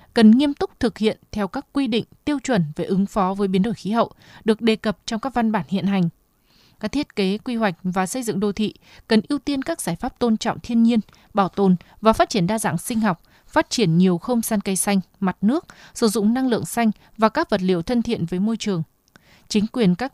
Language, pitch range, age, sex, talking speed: Vietnamese, 195-235 Hz, 20-39, female, 245 wpm